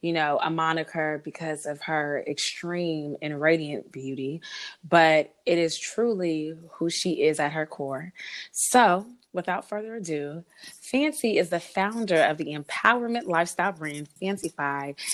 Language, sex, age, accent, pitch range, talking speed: English, female, 20-39, American, 155-200 Hz, 145 wpm